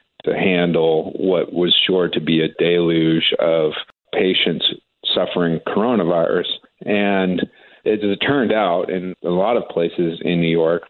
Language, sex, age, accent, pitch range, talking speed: English, male, 40-59, American, 85-105 Hz, 145 wpm